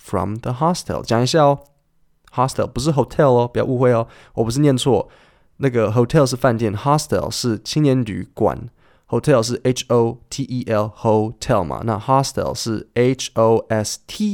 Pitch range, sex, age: 105-130 Hz, male, 20-39